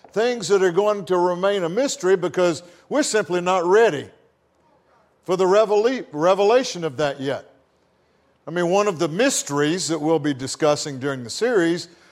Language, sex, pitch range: English, male, 155-215 Hz